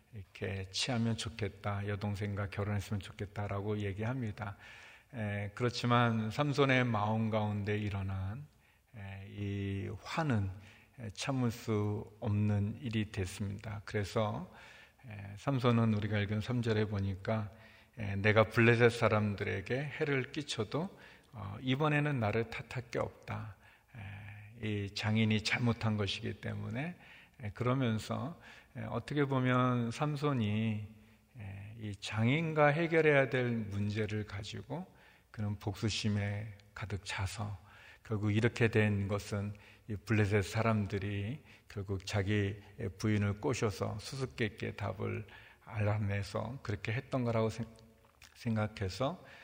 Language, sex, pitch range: Korean, male, 105-120 Hz